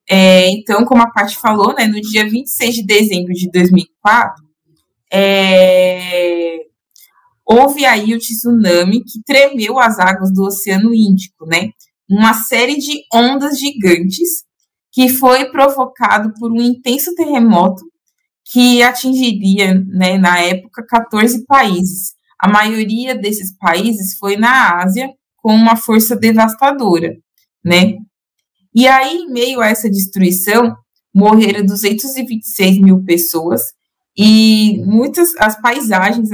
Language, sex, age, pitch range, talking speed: Portuguese, female, 20-39, 190-240 Hz, 120 wpm